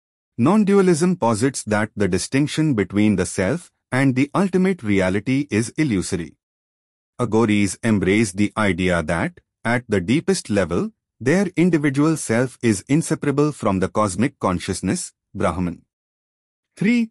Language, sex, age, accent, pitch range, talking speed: English, male, 30-49, Indian, 100-145 Hz, 120 wpm